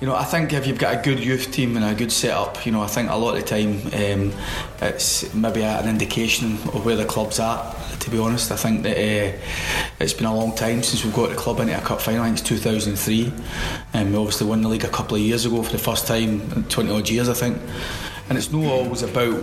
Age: 20-39